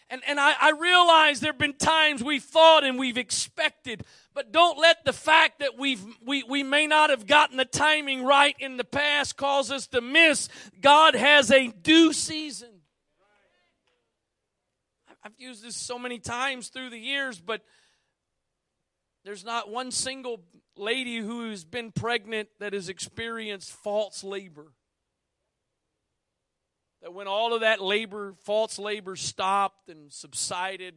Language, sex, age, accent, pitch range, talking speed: English, male, 40-59, American, 195-275 Hz, 150 wpm